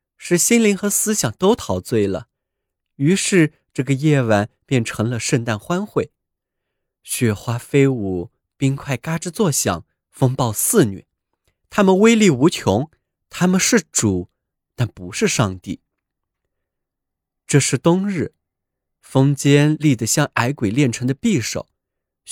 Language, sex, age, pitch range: Chinese, male, 20-39, 110-180 Hz